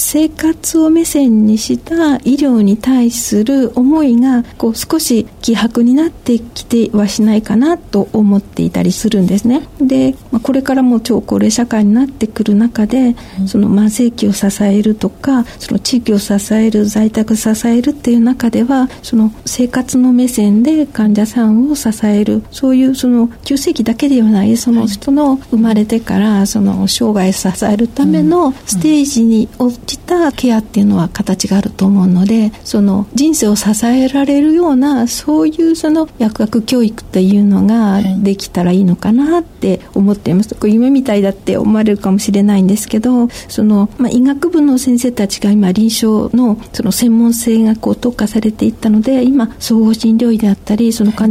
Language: Japanese